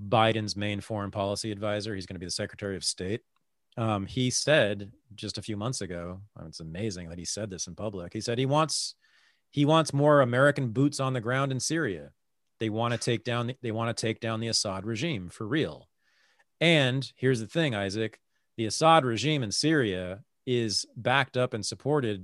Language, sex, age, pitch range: English, male, 40-59, 105-140 Hz